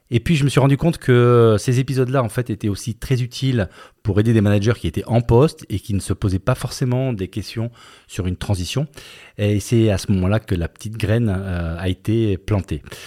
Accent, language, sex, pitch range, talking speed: French, French, male, 95-120 Hz, 225 wpm